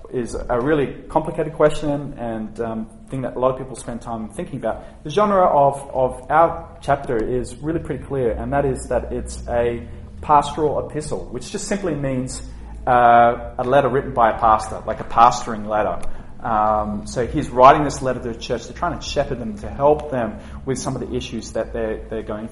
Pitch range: 115-150 Hz